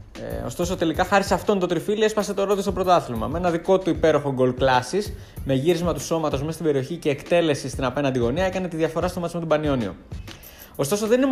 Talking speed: 230 wpm